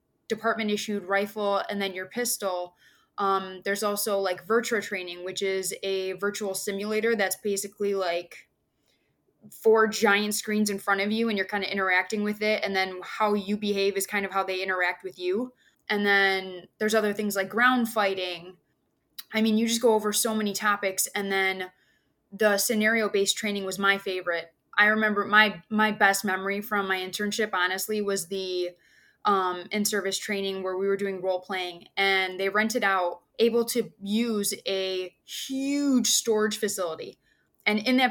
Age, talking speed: 20-39, 165 wpm